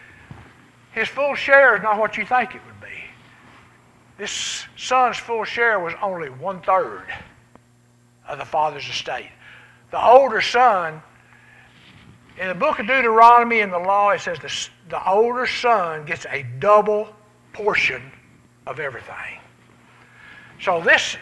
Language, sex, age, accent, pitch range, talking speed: English, male, 60-79, American, 165-255 Hz, 135 wpm